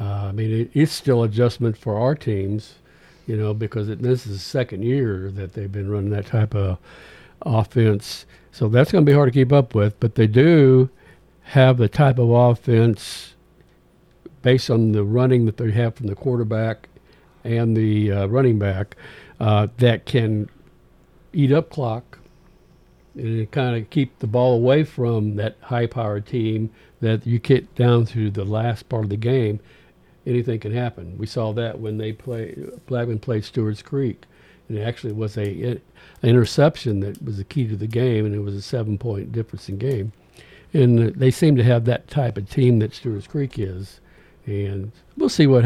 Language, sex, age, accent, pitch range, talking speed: English, male, 60-79, American, 105-125 Hz, 180 wpm